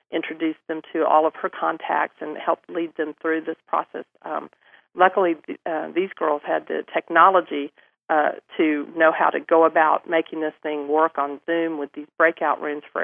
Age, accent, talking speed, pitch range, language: 40-59, American, 185 wpm, 150-170 Hz, English